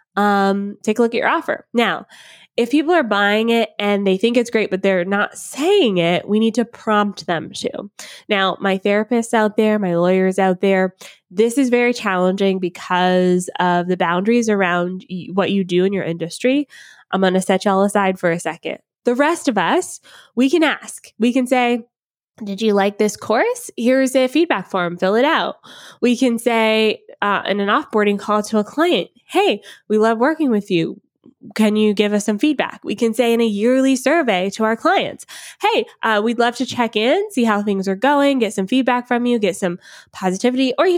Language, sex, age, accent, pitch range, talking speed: English, female, 20-39, American, 195-260 Hz, 205 wpm